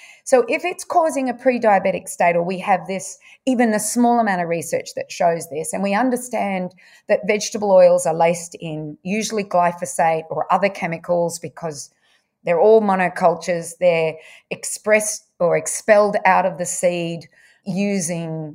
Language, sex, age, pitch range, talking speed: English, female, 30-49, 180-235 Hz, 150 wpm